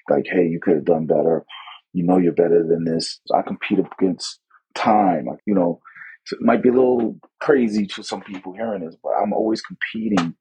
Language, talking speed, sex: English, 195 wpm, male